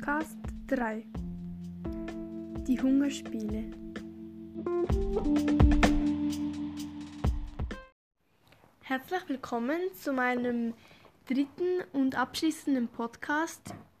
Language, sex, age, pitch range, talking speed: German, female, 10-29, 235-280 Hz, 55 wpm